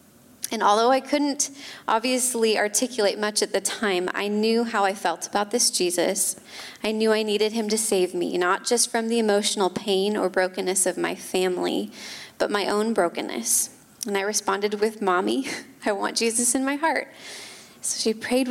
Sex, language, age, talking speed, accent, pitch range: female, English, 20-39, 180 wpm, American, 200-245 Hz